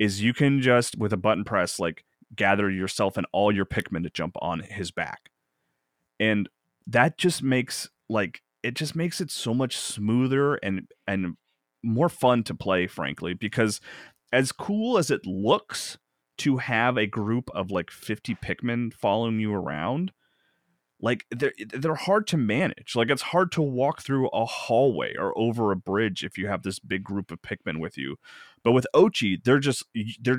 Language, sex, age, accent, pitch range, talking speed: English, male, 30-49, American, 100-130 Hz, 180 wpm